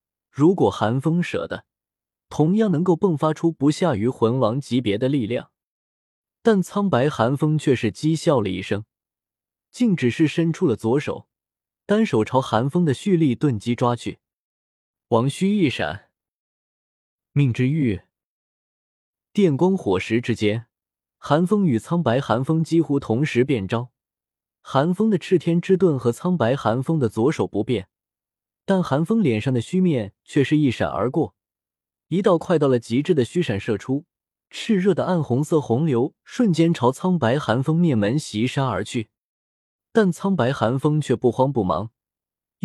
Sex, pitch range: male, 115-175 Hz